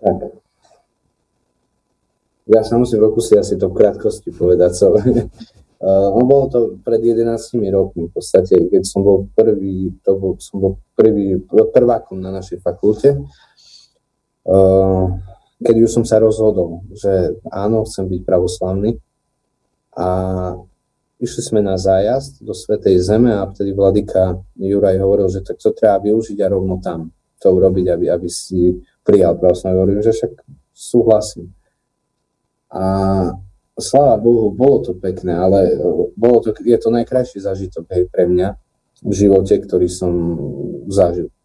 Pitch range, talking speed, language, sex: 95-115 Hz, 140 wpm, Slovak, male